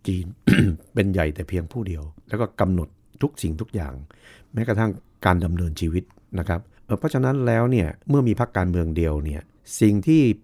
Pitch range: 85-110 Hz